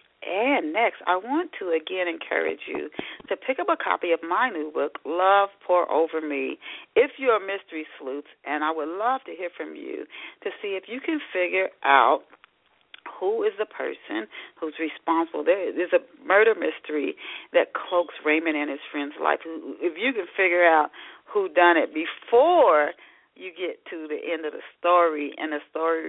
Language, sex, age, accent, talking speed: English, female, 40-59, American, 180 wpm